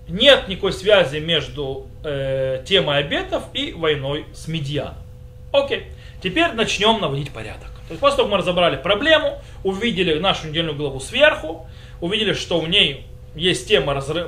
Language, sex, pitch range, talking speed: Russian, male, 150-225 Hz, 145 wpm